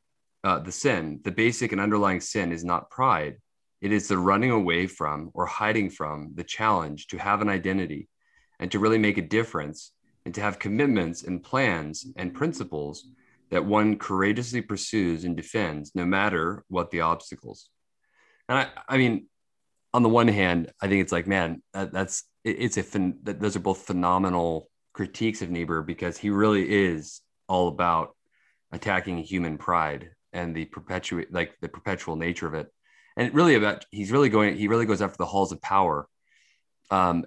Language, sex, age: English, male, 30-49